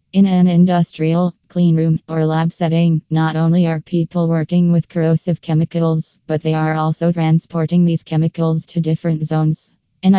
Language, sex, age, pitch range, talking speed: English, female, 20-39, 165-180 Hz, 160 wpm